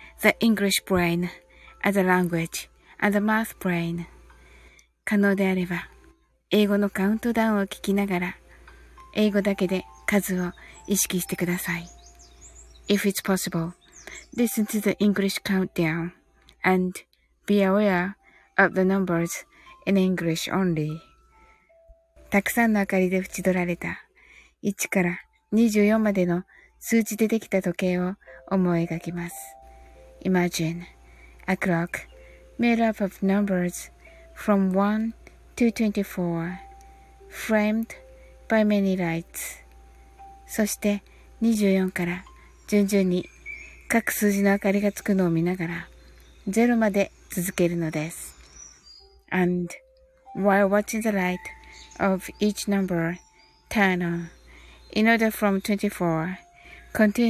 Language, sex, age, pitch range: Japanese, female, 20-39, 175-210 Hz